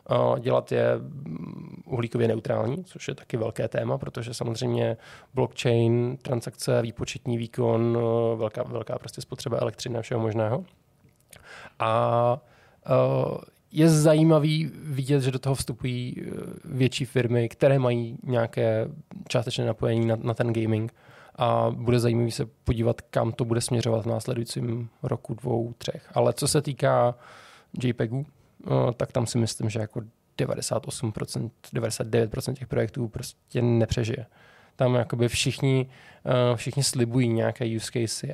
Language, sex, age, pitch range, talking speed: Czech, male, 20-39, 115-130 Hz, 125 wpm